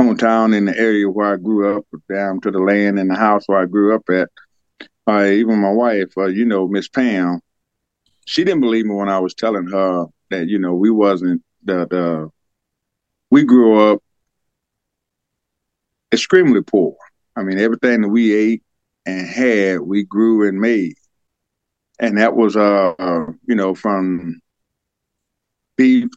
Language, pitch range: English, 95-115 Hz